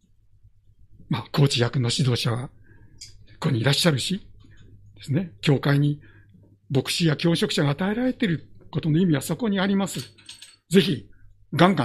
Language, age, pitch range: Japanese, 60-79, 105-155 Hz